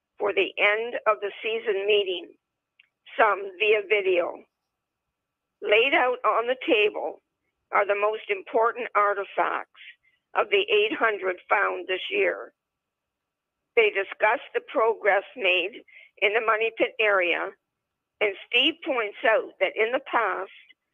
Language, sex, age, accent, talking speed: English, female, 50-69, American, 125 wpm